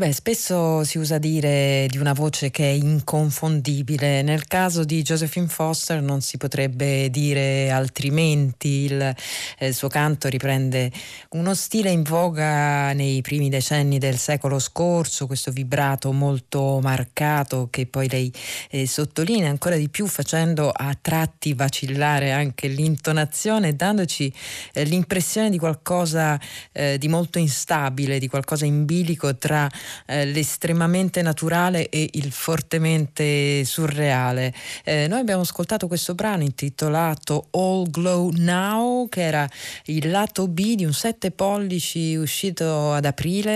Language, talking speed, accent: Italian, 130 wpm, native